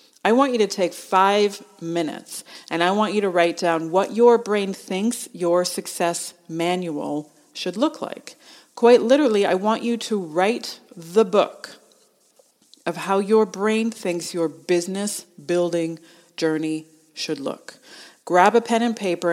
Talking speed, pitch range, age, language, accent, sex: 150 wpm, 170-210 Hz, 40-59, English, American, female